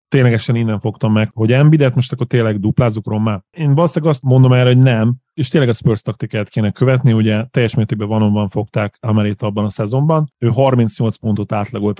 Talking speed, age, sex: 185 wpm, 30-49, male